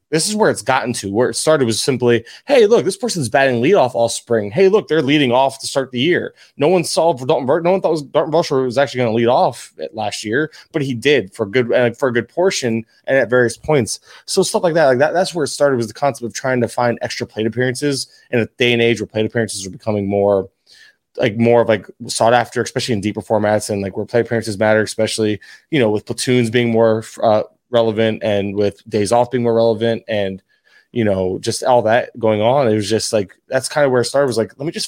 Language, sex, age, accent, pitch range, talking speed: English, male, 20-39, American, 110-130 Hz, 260 wpm